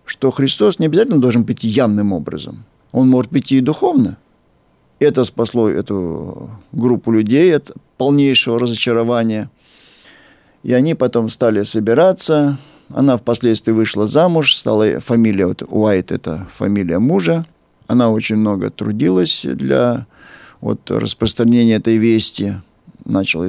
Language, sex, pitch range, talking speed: Russian, male, 105-130 Hz, 115 wpm